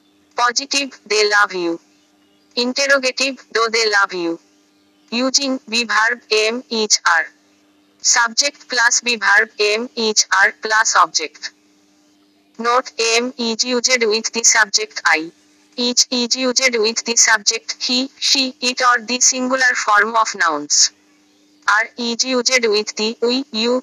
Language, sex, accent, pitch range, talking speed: Bengali, female, native, 145-245 Hz, 135 wpm